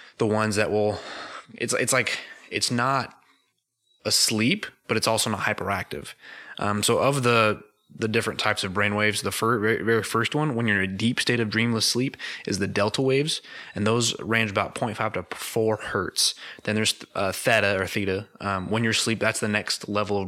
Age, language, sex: 20-39, English, male